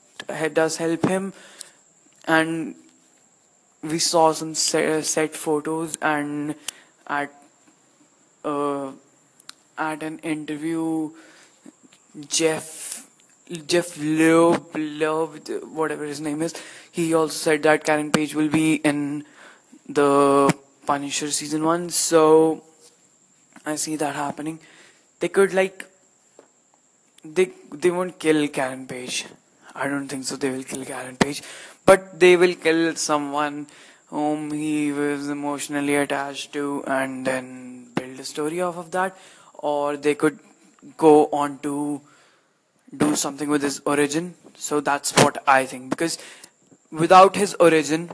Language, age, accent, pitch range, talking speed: English, 20-39, Indian, 145-165 Hz, 125 wpm